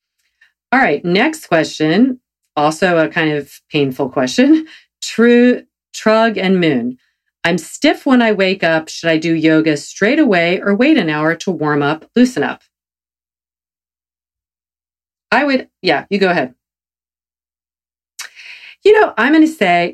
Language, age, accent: English, 40-59, American